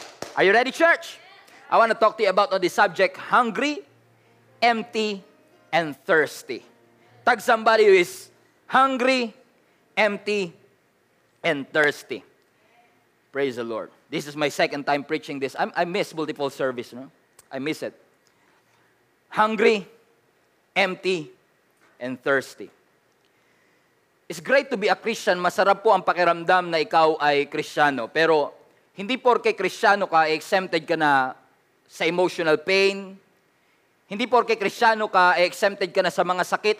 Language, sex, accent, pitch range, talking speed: English, male, Filipino, 170-225 Hz, 135 wpm